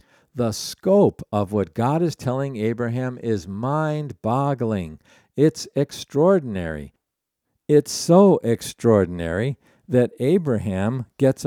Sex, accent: male, American